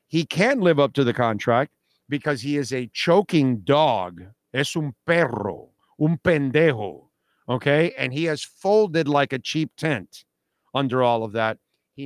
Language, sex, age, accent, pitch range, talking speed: English, male, 50-69, American, 115-155 Hz, 160 wpm